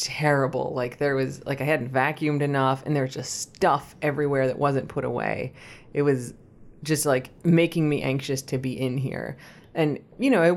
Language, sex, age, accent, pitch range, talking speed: English, female, 30-49, American, 135-155 Hz, 195 wpm